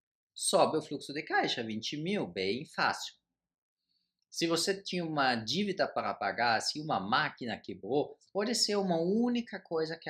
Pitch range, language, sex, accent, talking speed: 110-180 Hz, Portuguese, male, Brazilian, 155 wpm